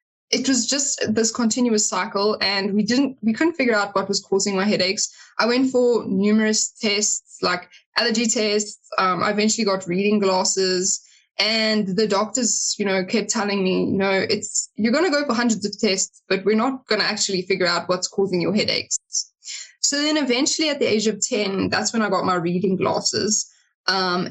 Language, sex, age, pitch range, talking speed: English, female, 10-29, 190-225 Hz, 195 wpm